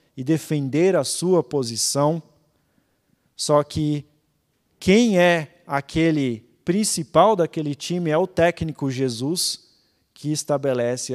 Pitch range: 130-185 Hz